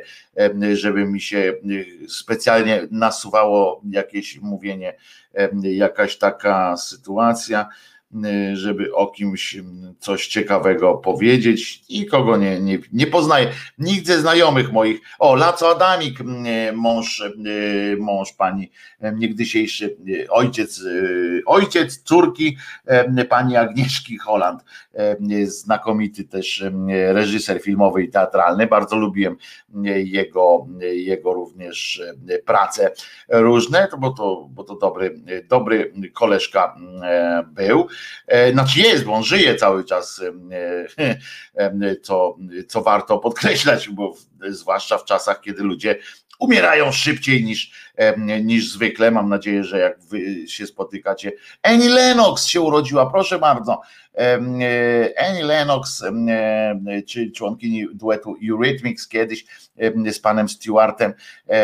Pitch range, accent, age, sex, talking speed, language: 100-125 Hz, native, 50-69, male, 100 wpm, Polish